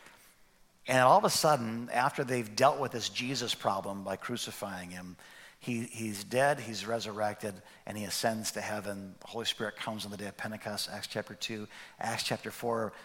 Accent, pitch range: American, 115-165 Hz